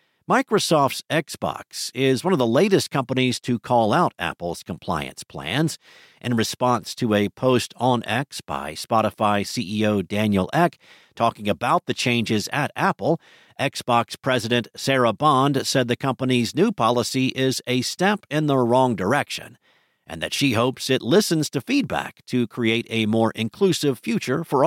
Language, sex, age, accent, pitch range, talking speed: English, male, 50-69, American, 110-140 Hz, 155 wpm